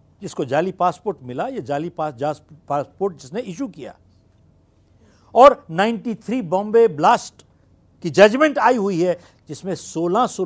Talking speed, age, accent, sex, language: 120 wpm, 60-79, native, male, Hindi